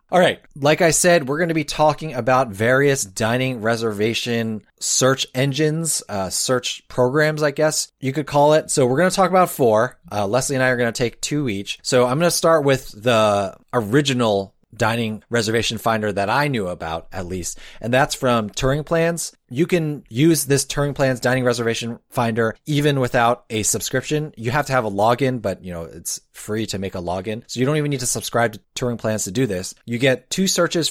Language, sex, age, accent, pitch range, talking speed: English, male, 20-39, American, 110-140 Hz, 210 wpm